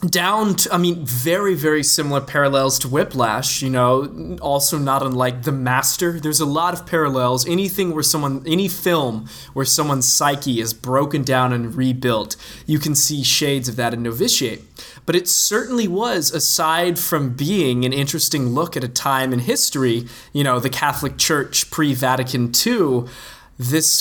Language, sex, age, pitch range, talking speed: English, male, 20-39, 125-160 Hz, 165 wpm